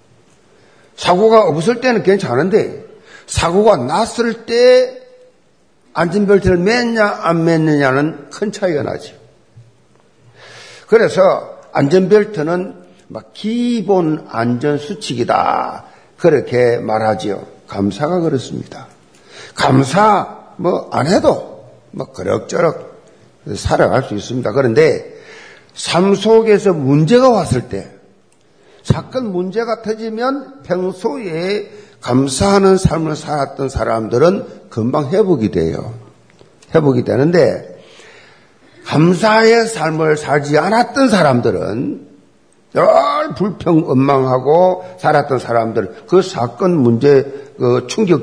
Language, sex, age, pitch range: Korean, male, 50-69, 135-220 Hz